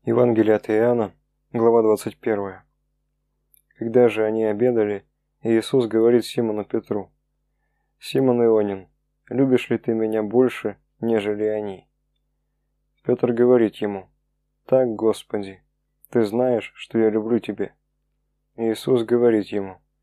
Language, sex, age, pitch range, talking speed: Russian, male, 20-39, 105-120 Hz, 110 wpm